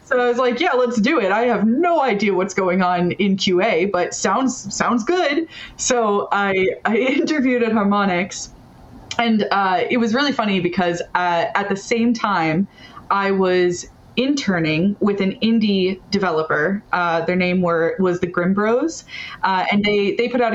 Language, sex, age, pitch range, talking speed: English, female, 20-39, 175-225 Hz, 175 wpm